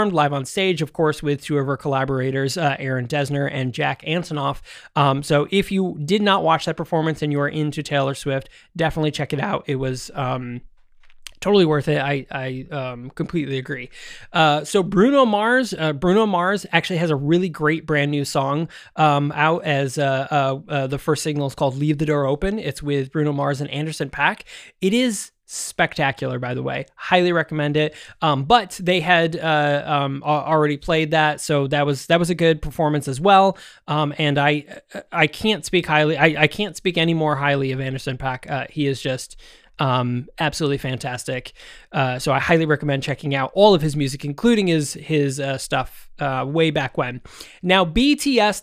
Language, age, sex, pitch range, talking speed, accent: English, 20-39, male, 140-170 Hz, 195 wpm, American